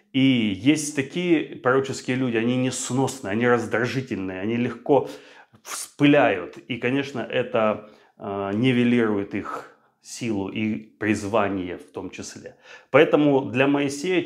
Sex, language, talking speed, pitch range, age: male, Russian, 115 wpm, 105-130 Hz, 30-49